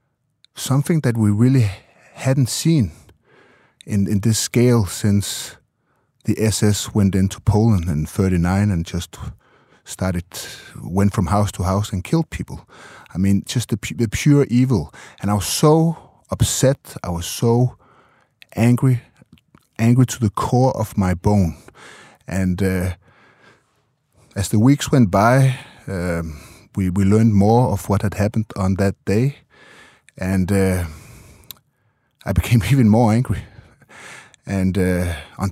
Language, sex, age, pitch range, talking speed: Danish, male, 30-49, 95-125 Hz, 135 wpm